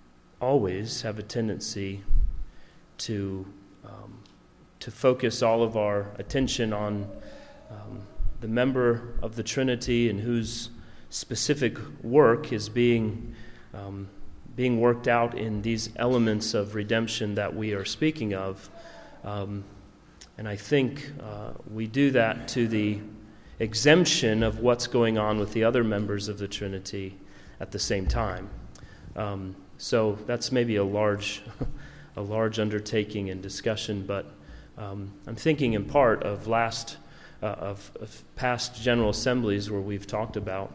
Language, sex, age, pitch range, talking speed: English, male, 30-49, 100-120 Hz, 140 wpm